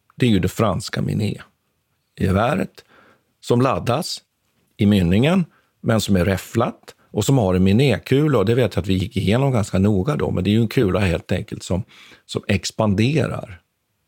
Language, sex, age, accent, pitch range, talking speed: Swedish, male, 50-69, native, 90-120 Hz, 180 wpm